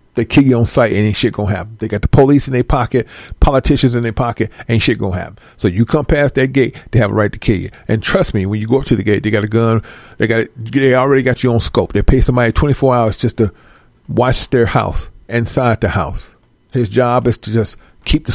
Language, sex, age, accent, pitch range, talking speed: English, male, 40-59, American, 110-135 Hz, 265 wpm